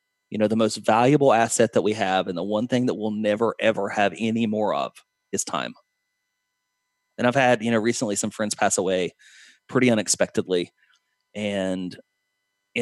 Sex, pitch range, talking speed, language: male, 100-115 Hz, 175 wpm, English